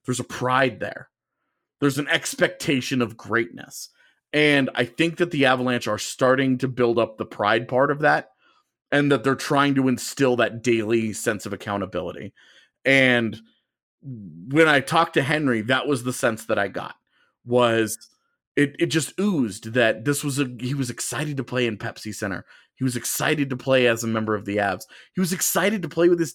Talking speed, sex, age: 190 wpm, male, 30-49